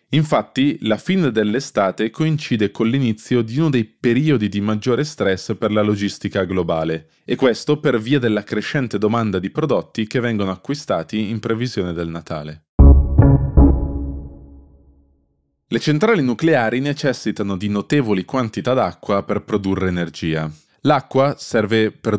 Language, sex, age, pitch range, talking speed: Italian, male, 20-39, 95-120 Hz, 130 wpm